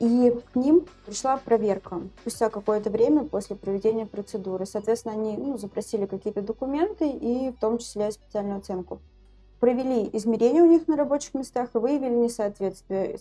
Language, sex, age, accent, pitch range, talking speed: Russian, female, 20-39, native, 210-250 Hz, 155 wpm